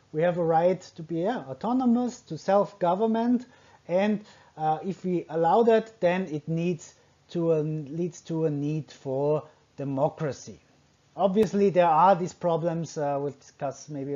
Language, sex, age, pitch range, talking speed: English, male, 30-49, 140-180 Hz, 155 wpm